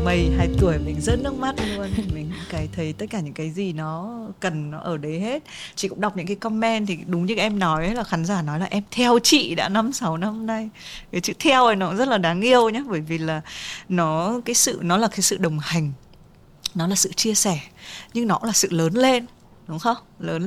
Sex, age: female, 20-39